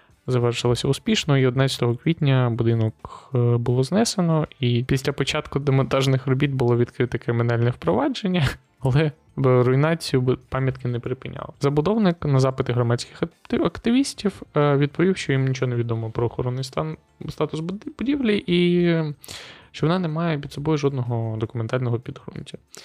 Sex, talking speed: male, 125 wpm